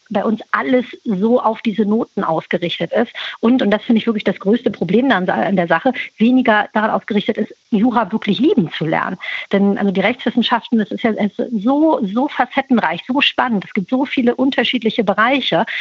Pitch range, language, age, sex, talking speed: 200-240 Hz, German, 50-69, female, 190 wpm